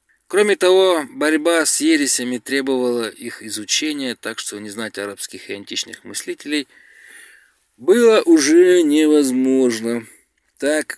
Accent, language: native, Russian